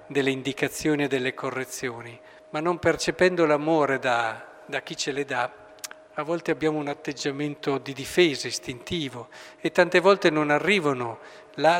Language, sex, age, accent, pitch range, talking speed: Italian, male, 50-69, native, 135-165 Hz, 145 wpm